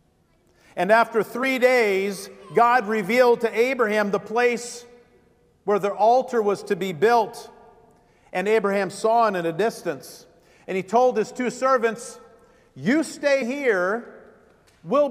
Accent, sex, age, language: American, male, 50-69, English